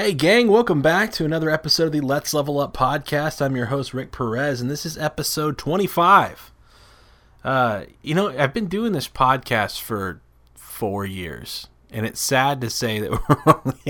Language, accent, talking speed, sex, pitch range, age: English, American, 175 wpm, male, 105-150 Hz, 30-49